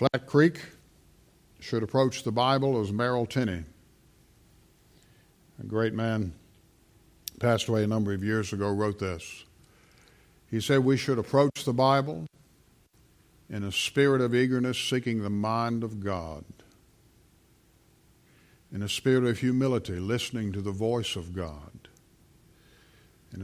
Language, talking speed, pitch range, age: English, 130 wpm, 100-125 Hz, 60-79